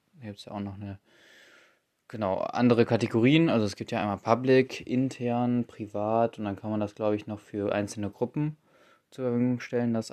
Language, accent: German, German